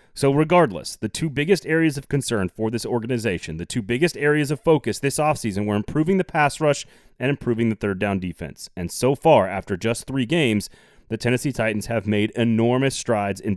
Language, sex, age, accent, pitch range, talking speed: English, male, 30-49, American, 110-150 Hz, 200 wpm